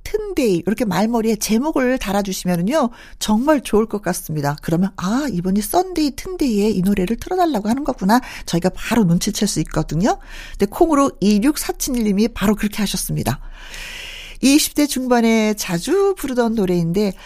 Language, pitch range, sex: Korean, 185-280 Hz, female